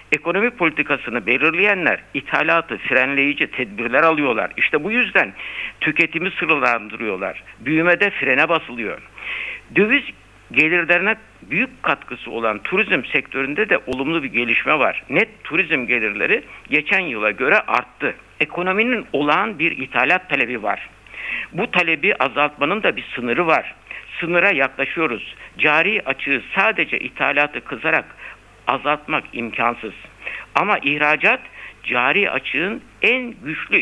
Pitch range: 145-205 Hz